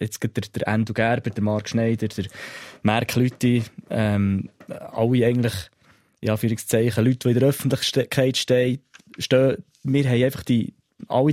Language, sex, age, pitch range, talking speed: German, male, 20-39, 115-140 Hz, 145 wpm